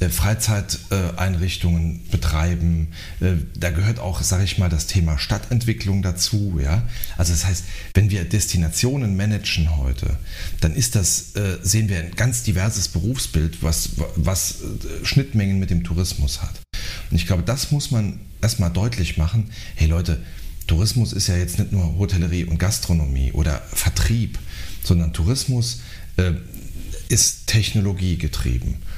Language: German